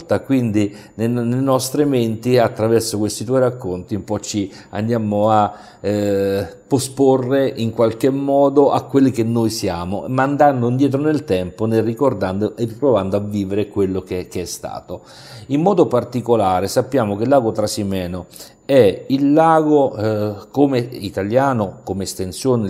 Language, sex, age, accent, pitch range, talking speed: Italian, male, 50-69, native, 95-120 Hz, 145 wpm